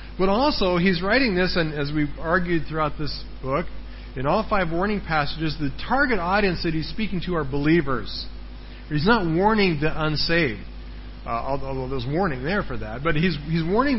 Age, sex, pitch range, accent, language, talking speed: 40-59, male, 135-185 Hz, American, English, 180 wpm